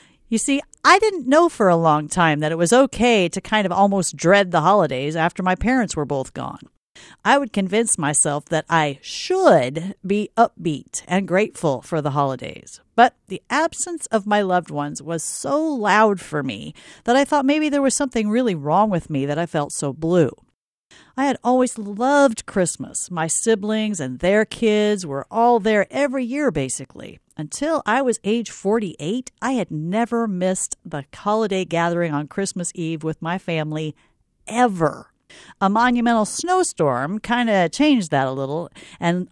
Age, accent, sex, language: 50-69, American, female, English